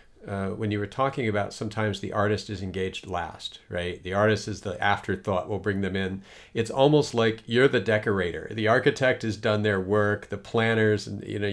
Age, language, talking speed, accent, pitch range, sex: 50-69, English, 210 wpm, American, 95-110 Hz, male